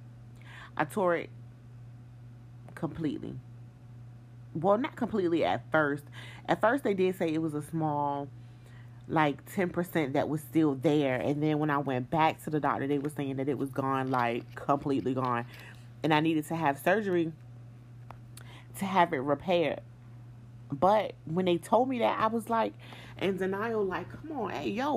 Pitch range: 120-170 Hz